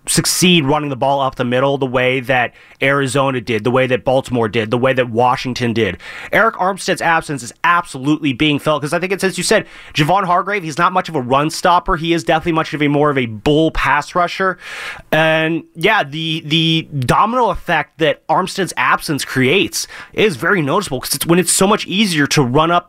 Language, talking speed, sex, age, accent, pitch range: English, 205 wpm, male, 30-49, American, 140-175 Hz